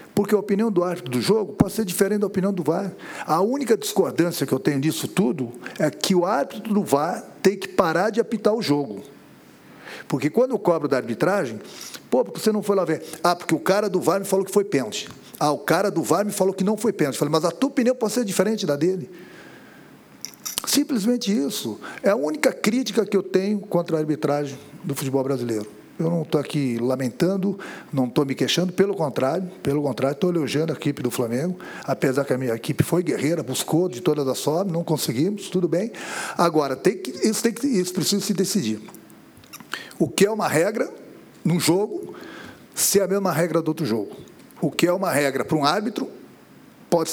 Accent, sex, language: Brazilian, male, Portuguese